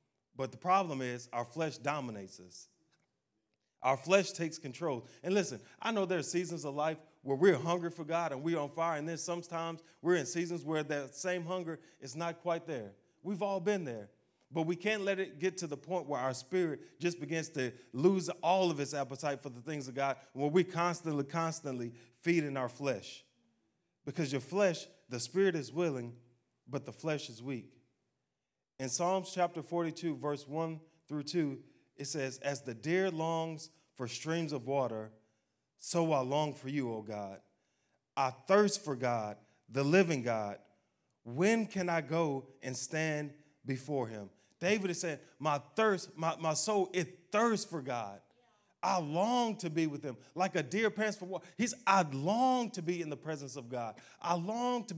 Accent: American